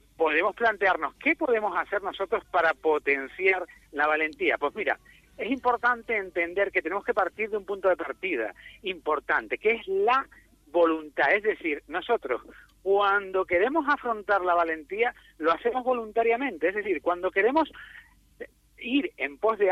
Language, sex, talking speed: Spanish, male, 145 wpm